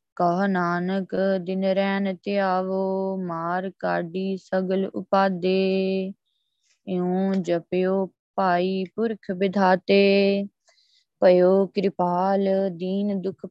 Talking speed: 80 wpm